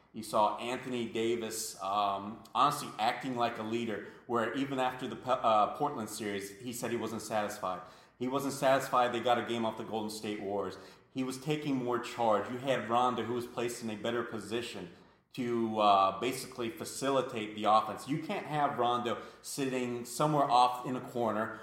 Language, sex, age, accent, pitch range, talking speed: English, male, 30-49, American, 110-125 Hz, 180 wpm